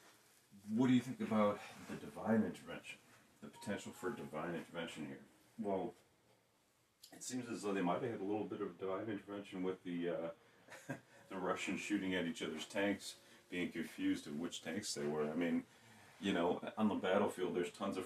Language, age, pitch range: English, 40-59, 80-110 Hz